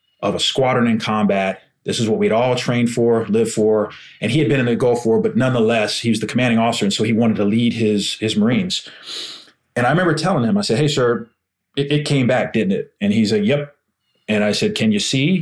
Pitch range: 115-155 Hz